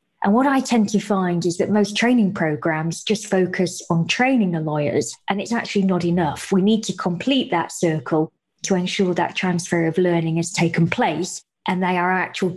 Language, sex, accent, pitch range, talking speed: English, female, British, 170-205 Hz, 195 wpm